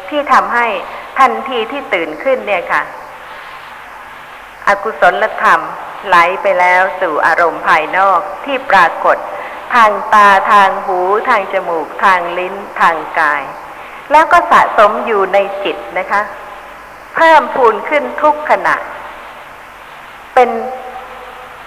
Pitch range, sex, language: 200-275 Hz, female, Thai